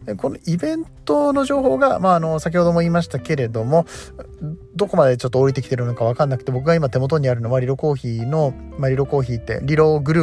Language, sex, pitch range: Japanese, male, 120-160 Hz